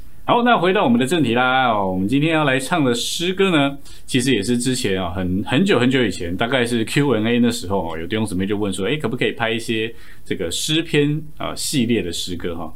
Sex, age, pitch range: male, 20-39, 100-135 Hz